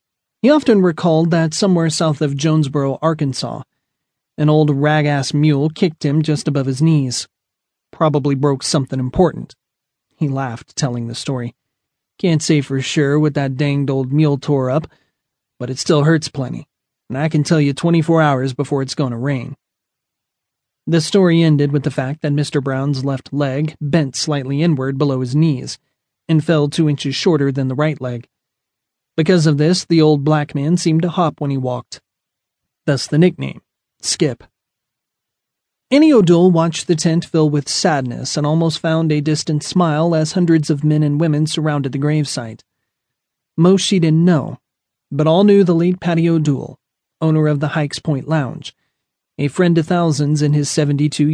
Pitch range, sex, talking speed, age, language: 140-160 Hz, male, 170 wpm, 30-49, English